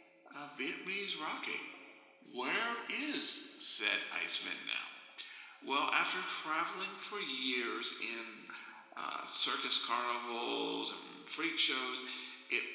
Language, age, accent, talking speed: English, 50-69, American, 105 wpm